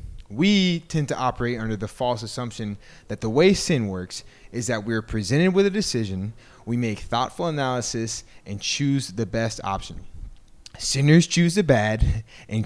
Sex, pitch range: male, 105-150 Hz